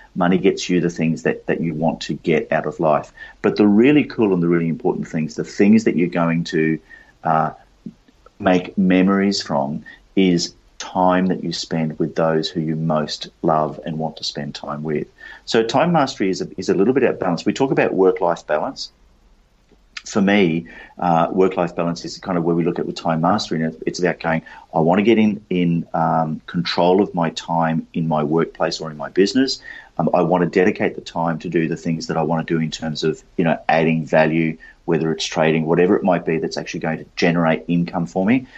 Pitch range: 80-90 Hz